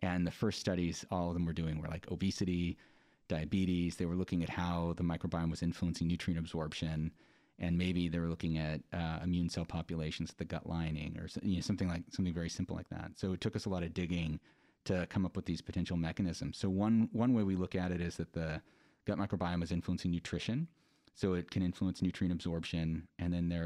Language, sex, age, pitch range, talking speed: English, male, 30-49, 85-95 Hz, 225 wpm